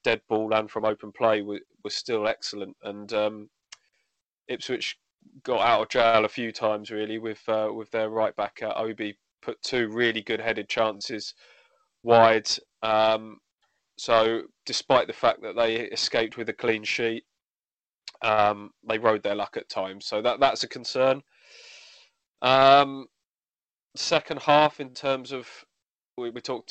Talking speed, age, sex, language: 150 wpm, 20-39, male, English